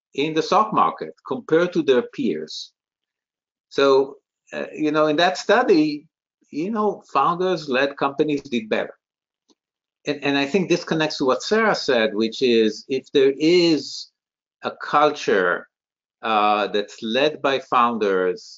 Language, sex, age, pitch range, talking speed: German, male, 50-69, 115-155 Hz, 140 wpm